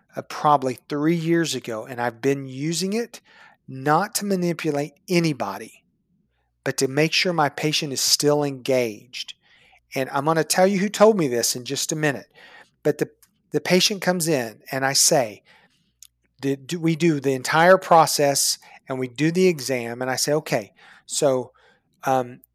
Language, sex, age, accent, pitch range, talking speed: English, male, 40-59, American, 140-190 Hz, 170 wpm